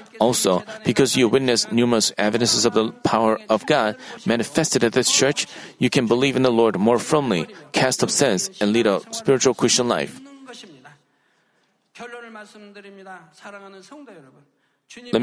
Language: Korean